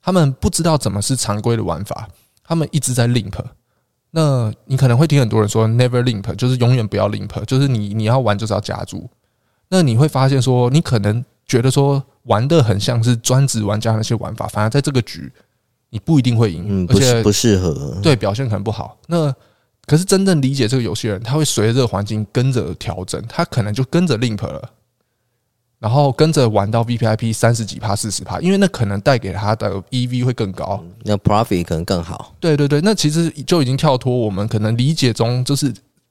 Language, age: Chinese, 20-39